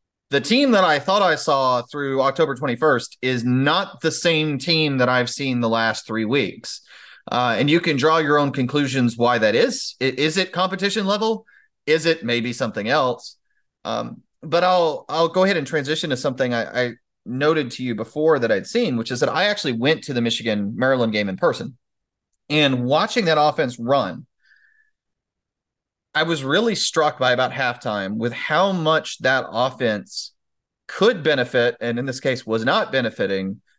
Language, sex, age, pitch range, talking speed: English, male, 30-49, 120-160 Hz, 180 wpm